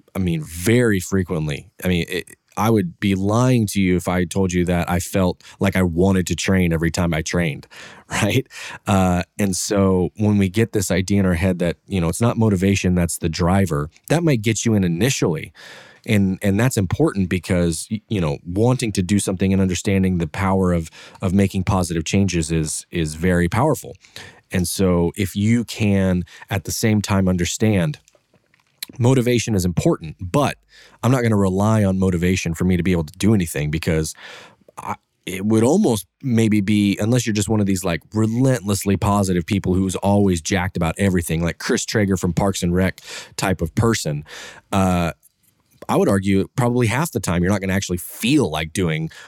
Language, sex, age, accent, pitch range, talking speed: English, male, 20-39, American, 90-105 Hz, 190 wpm